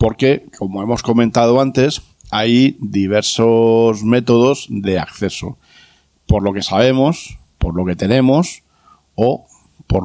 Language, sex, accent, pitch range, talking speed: Spanish, male, Spanish, 95-125 Hz, 120 wpm